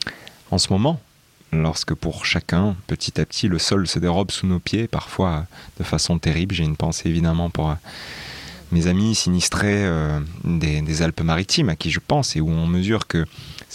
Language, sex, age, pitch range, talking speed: French, male, 30-49, 80-95 Hz, 175 wpm